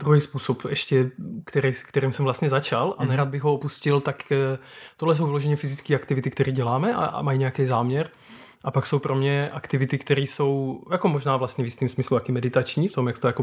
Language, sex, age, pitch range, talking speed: Czech, male, 20-39, 130-145 Hz, 205 wpm